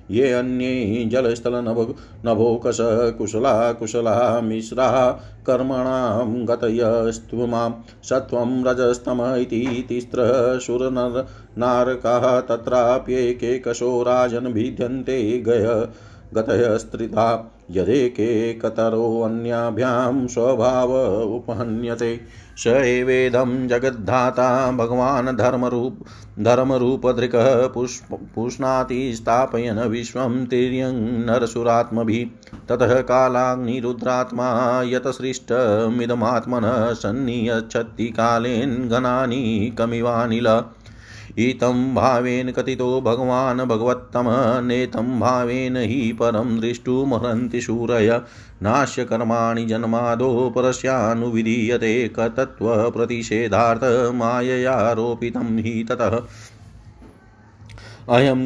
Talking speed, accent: 50 wpm, native